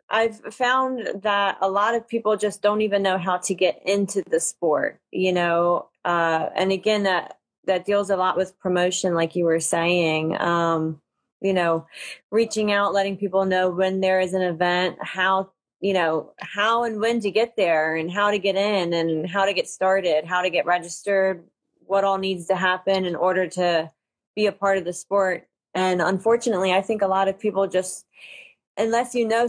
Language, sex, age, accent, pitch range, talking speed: English, female, 30-49, American, 180-205 Hz, 195 wpm